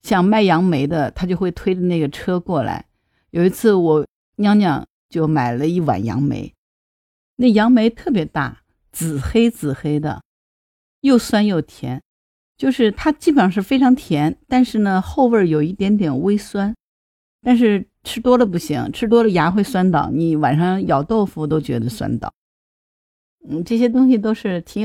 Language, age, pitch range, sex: Chinese, 50-69, 155-210 Hz, female